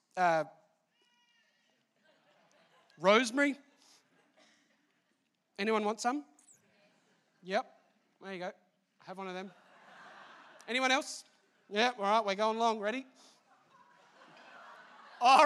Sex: male